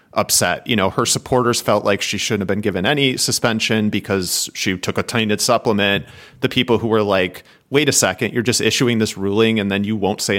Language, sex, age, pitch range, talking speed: English, male, 30-49, 100-145 Hz, 220 wpm